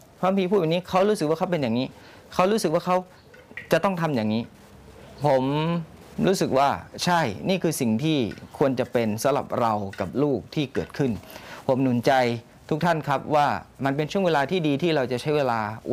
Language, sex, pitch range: Thai, male, 105-140 Hz